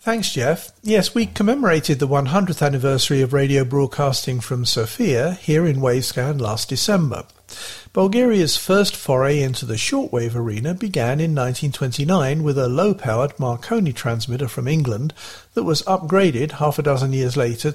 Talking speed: 145 wpm